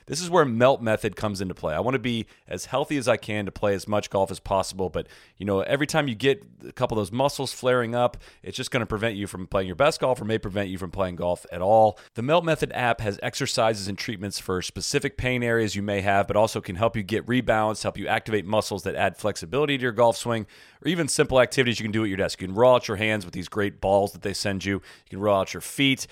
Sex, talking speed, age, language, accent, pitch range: male, 280 wpm, 30-49, English, American, 100-125 Hz